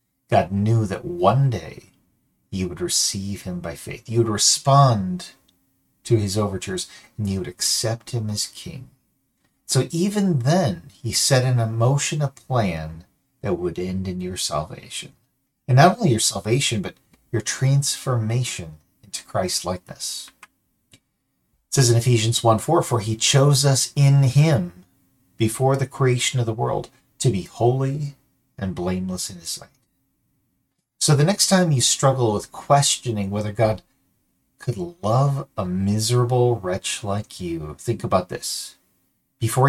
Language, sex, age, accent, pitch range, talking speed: English, male, 40-59, American, 100-140 Hz, 145 wpm